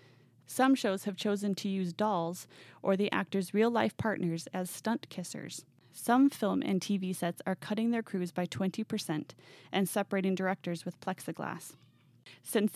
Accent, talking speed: American, 150 wpm